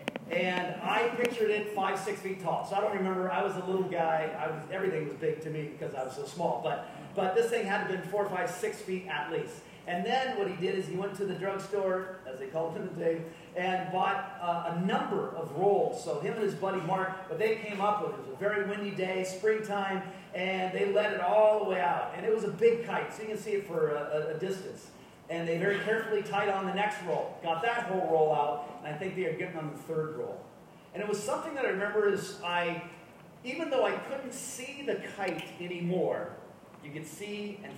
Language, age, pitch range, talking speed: English, 40-59, 160-205 Hz, 245 wpm